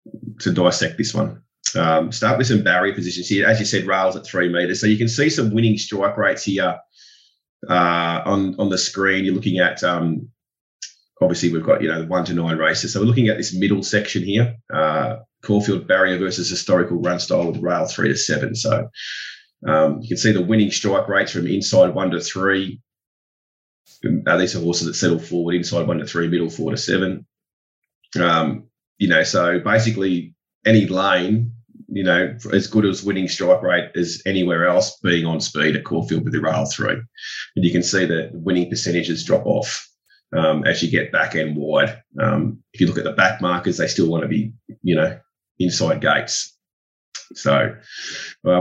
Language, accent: English, Australian